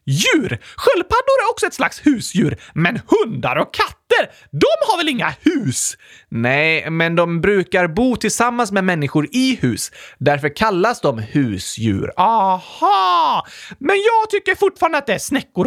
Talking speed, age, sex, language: 150 wpm, 30-49, male, Swedish